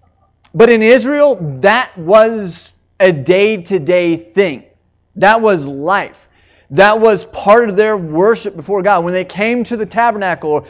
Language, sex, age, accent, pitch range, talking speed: English, male, 30-49, American, 150-215 Hz, 140 wpm